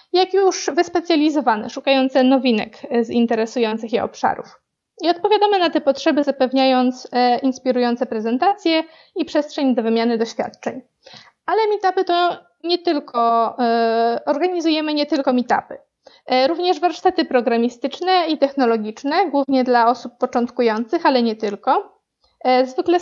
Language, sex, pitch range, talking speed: Polish, female, 240-300 Hz, 115 wpm